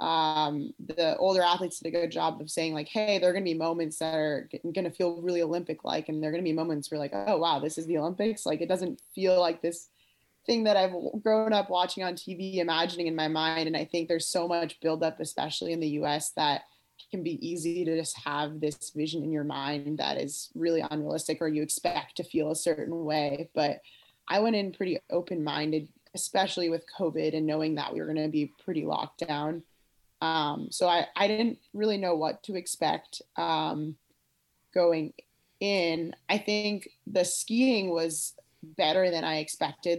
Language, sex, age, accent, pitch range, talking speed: English, female, 20-39, American, 155-185 Hz, 205 wpm